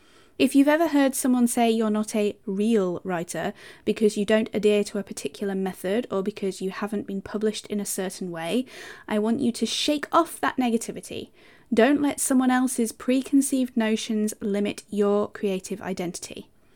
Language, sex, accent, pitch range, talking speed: English, female, British, 205-255 Hz, 170 wpm